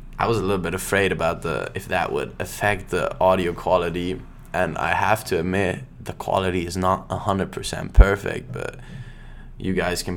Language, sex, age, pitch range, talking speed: English, male, 20-39, 85-100 Hz, 175 wpm